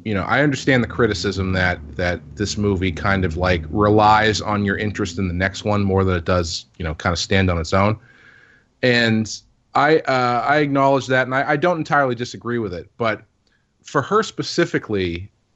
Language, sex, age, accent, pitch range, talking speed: English, male, 30-49, American, 100-130 Hz, 195 wpm